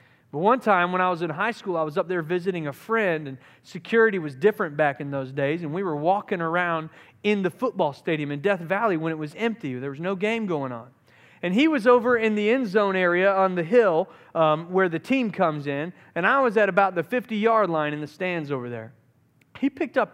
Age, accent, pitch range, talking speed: 40-59, American, 155-225 Hz, 240 wpm